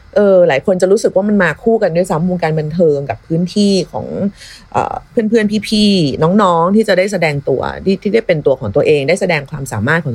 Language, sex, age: Thai, female, 30-49